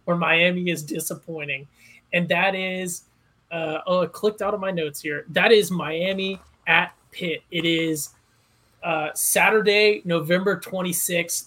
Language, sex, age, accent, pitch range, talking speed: English, male, 20-39, American, 160-190 Hz, 140 wpm